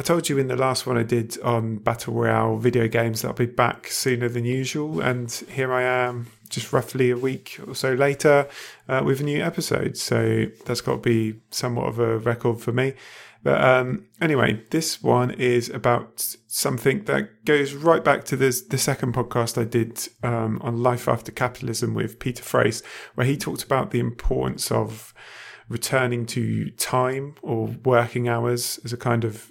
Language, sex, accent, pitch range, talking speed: English, male, British, 115-130 Hz, 185 wpm